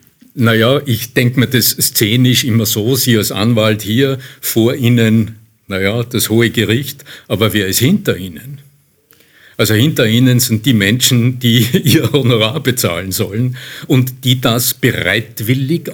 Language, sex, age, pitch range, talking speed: German, male, 50-69, 105-125 Hz, 145 wpm